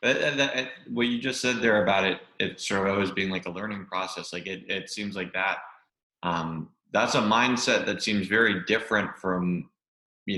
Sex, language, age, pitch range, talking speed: male, English, 20-39, 90-95 Hz, 200 wpm